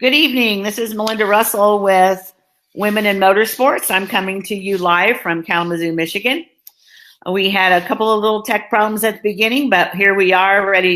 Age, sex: 50-69, female